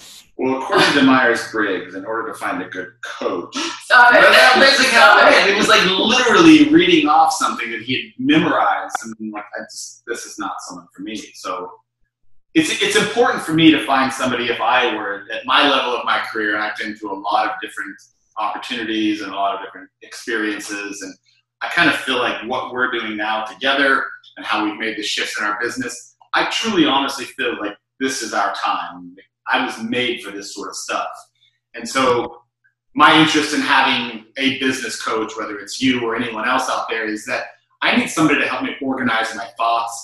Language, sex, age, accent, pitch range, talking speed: English, male, 30-49, American, 105-135 Hz, 200 wpm